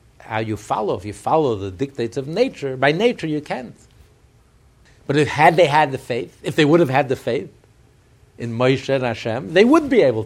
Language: English